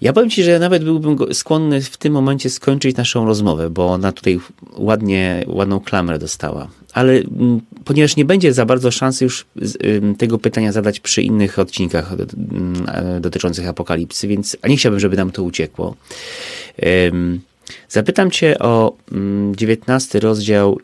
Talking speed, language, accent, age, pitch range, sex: 145 wpm, Polish, native, 30-49, 90-115 Hz, male